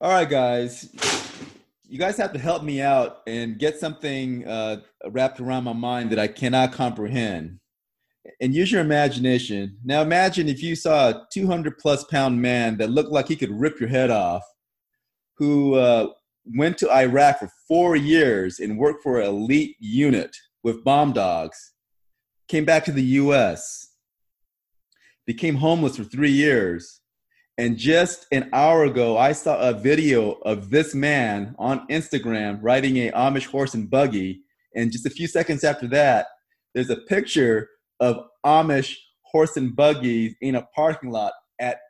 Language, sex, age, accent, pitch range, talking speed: English, male, 30-49, American, 120-150 Hz, 160 wpm